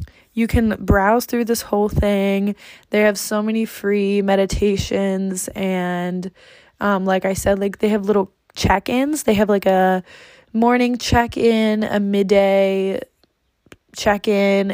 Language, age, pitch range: English, 20-39, 195-230 Hz